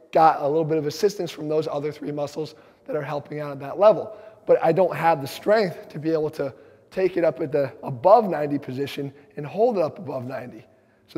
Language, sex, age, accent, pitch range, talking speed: English, male, 20-39, American, 145-175 Hz, 230 wpm